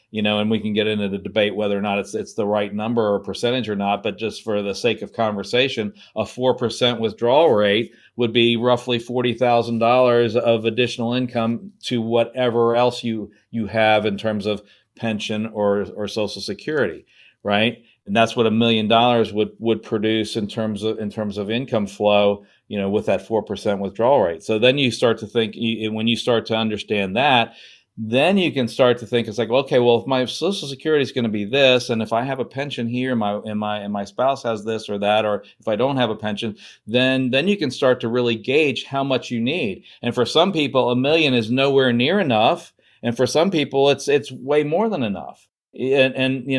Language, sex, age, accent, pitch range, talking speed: English, male, 50-69, American, 110-135 Hz, 225 wpm